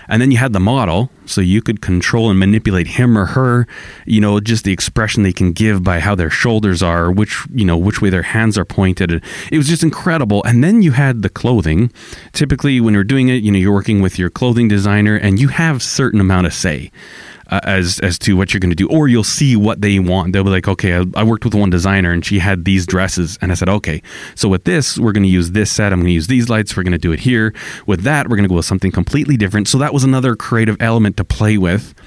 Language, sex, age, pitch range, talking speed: English, male, 30-49, 95-125 Hz, 260 wpm